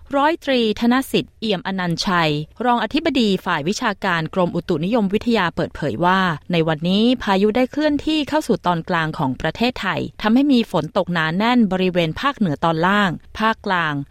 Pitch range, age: 175-225 Hz, 20-39